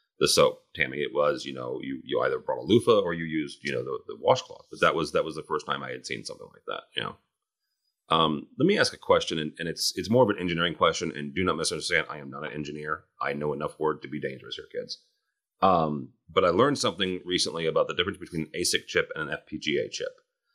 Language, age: English, 30-49